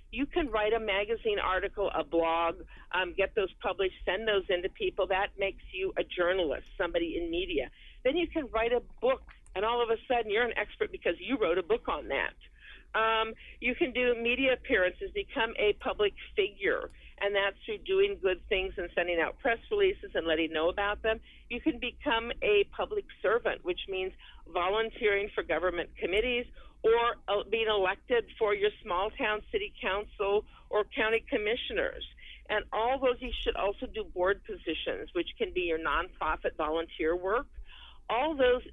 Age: 50-69